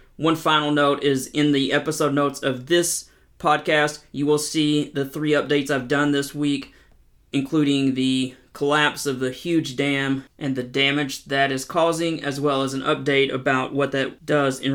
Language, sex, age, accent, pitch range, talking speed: English, male, 30-49, American, 130-145 Hz, 180 wpm